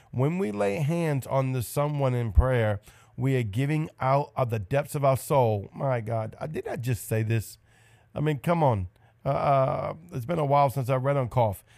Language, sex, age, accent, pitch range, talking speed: English, male, 40-59, American, 115-135 Hz, 205 wpm